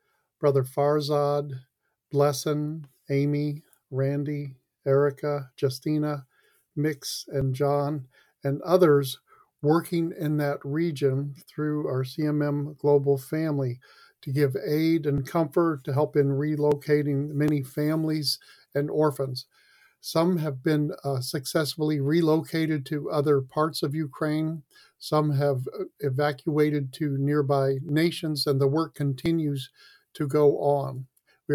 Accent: American